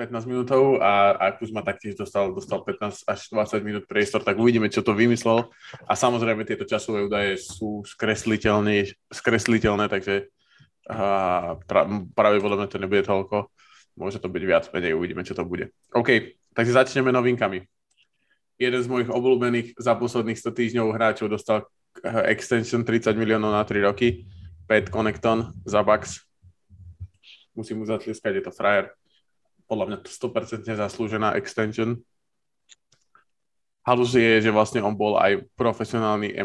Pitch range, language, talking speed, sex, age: 100-115 Hz, Slovak, 145 wpm, male, 20-39